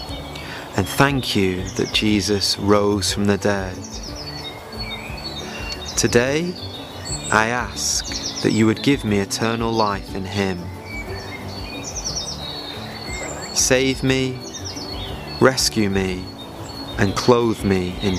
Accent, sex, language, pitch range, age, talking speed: British, male, English, 95-125 Hz, 30-49, 95 wpm